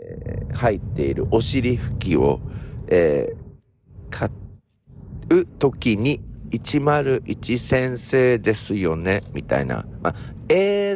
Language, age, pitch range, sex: Japanese, 50-69, 110-145 Hz, male